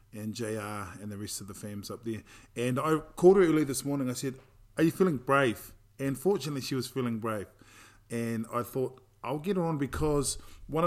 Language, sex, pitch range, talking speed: English, male, 110-130 Hz, 210 wpm